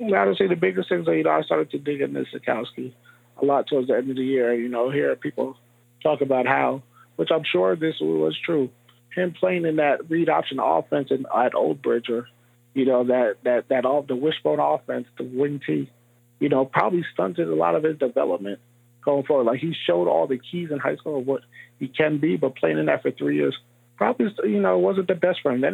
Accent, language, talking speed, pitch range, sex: American, English, 235 wpm, 120-165 Hz, male